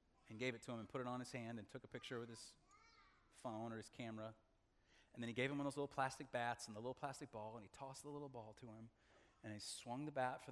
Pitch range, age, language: 125-155 Hz, 30-49, English